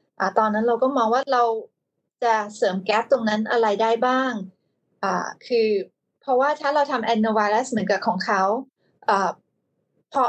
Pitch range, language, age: 215-270 Hz, Thai, 20-39